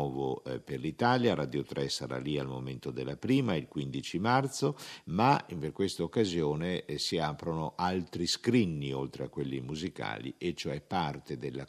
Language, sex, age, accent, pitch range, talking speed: Italian, male, 50-69, native, 70-95 Hz, 150 wpm